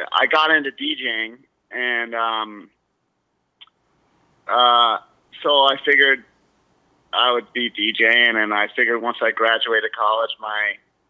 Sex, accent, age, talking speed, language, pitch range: male, American, 30-49, 120 wpm, English, 110-140 Hz